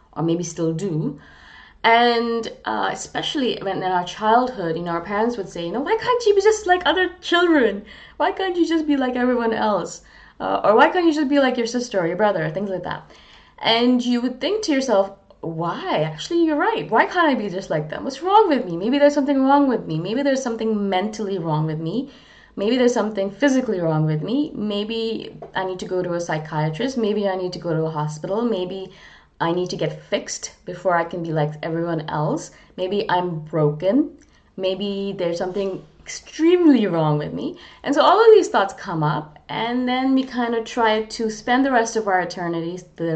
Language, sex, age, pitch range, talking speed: English, female, 20-39, 170-250 Hz, 215 wpm